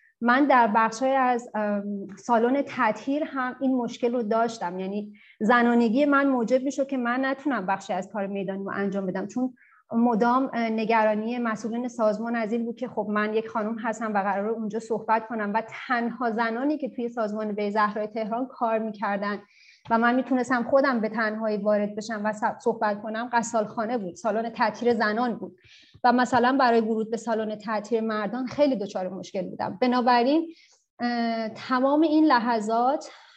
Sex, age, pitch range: female, 30-49, 215-245 Hz